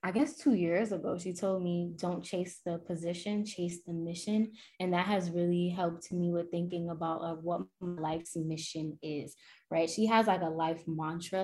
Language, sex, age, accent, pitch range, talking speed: English, female, 10-29, American, 165-180 Hz, 195 wpm